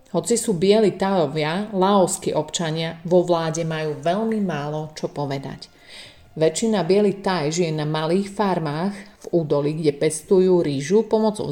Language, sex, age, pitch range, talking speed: Slovak, female, 30-49, 160-195 Hz, 130 wpm